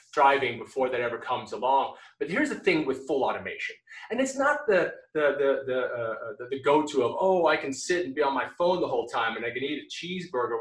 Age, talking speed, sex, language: 30-49, 245 wpm, male, English